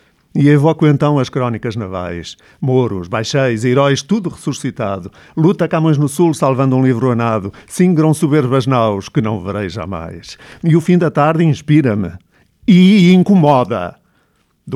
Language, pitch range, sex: Portuguese, 120-150 Hz, male